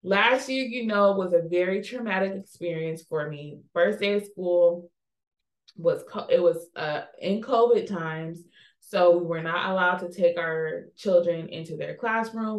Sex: female